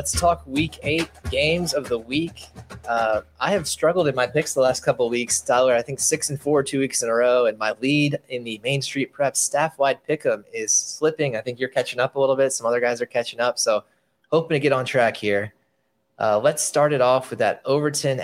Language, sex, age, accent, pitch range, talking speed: English, male, 20-39, American, 115-135 Hz, 240 wpm